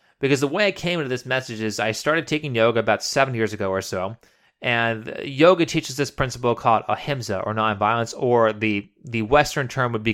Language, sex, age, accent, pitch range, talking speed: English, male, 30-49, American, 115-140 Hz, 205 wpm